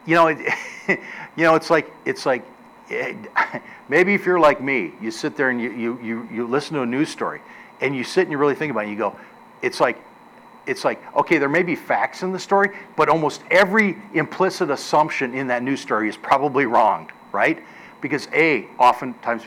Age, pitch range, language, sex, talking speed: 50-69, 130-185 Hz, English, male, 210 wpm